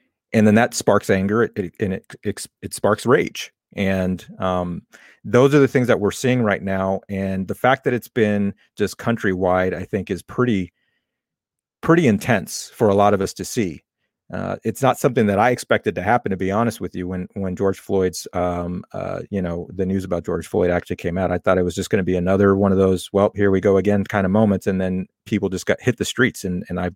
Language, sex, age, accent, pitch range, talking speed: English, male, 30-49, American, 95-110 Hz, 235 wpm